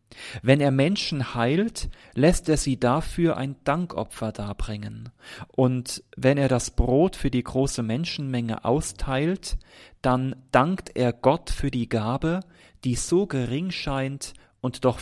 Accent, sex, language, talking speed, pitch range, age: German, male, German, 135 wpm, 110-145 Hz, 40-59